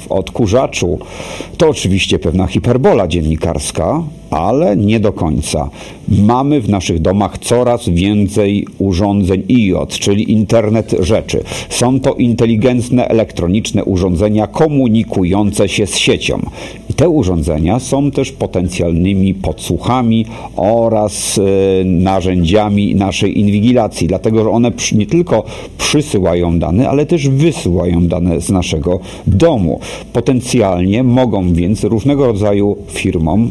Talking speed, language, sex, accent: 105 wpm, Polish, male, native